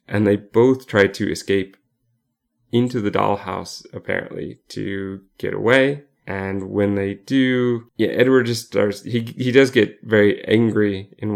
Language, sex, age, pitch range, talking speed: English, male, 30-49, 100-120 Hz, 150 wpm